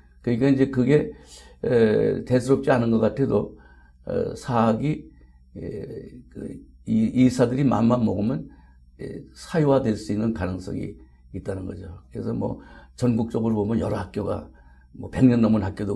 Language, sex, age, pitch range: Korean, male, 60-79, 90-130 Hz